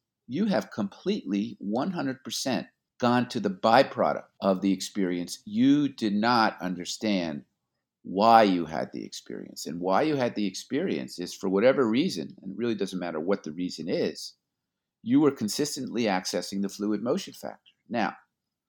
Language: English